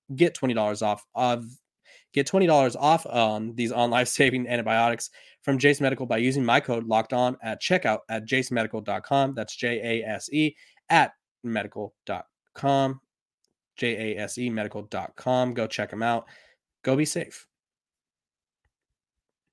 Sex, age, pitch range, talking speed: male, 20-39, 115-140 Hz, 135 wpm